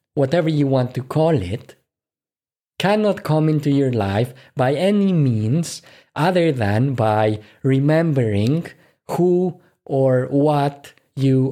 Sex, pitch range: male, 115-150 Hz